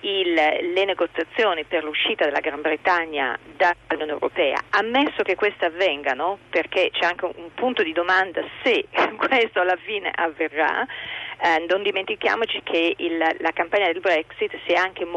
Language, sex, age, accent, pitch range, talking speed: Italian, female, 40-59, native, 165-225 Hz, 145 wpm